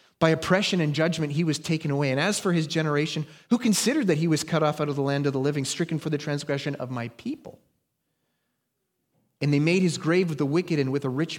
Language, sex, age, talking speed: English, male, 30-49, 240 wpm